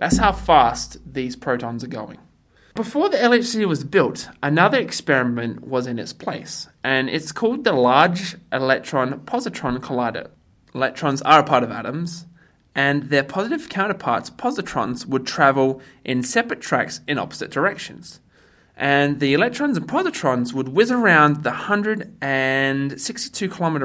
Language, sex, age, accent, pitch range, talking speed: English, male, 20-39, Australian, 130-215 Hz, 135 wpm